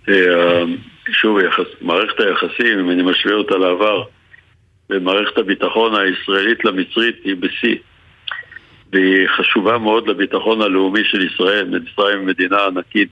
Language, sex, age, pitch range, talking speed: Hebrew, male, 60-79, 100-145 Hz, 120 wpm